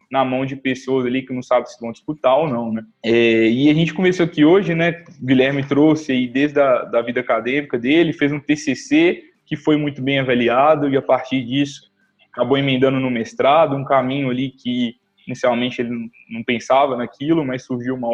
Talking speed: 200 wpm